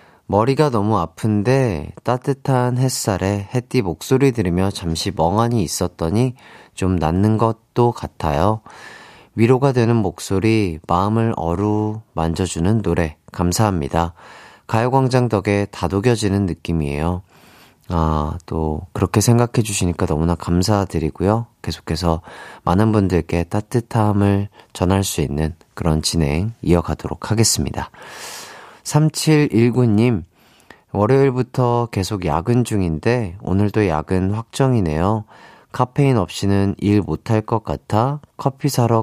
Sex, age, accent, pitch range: male, 30-49, native, 85-120 Hz